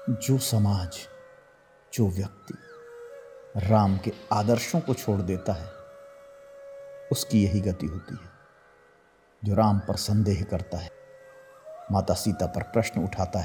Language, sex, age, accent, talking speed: Hindi, male, 50-69, native, 120 wpm